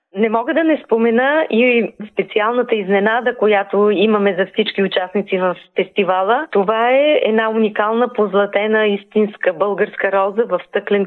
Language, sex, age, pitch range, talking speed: Bulgarian, female, 20-39, 190-235 Hz, 135 wpm